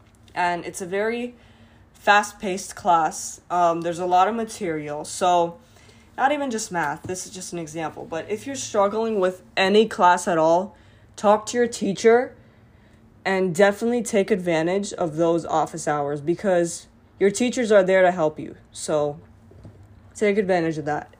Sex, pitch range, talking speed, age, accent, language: female, 160-205 Hz, 160 wpm, 20-39, American, English